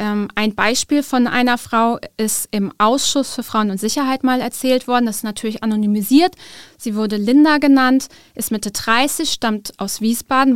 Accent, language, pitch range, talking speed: German, German, 220-255 Hz, 165 wpm